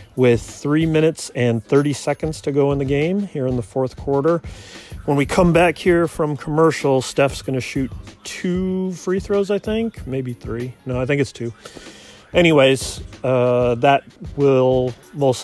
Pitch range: 125-160 Hz